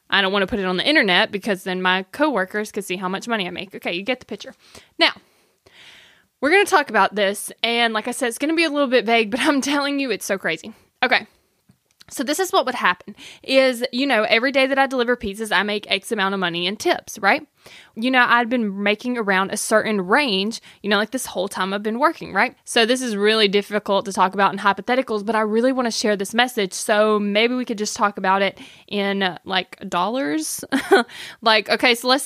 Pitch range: 205-260 Hz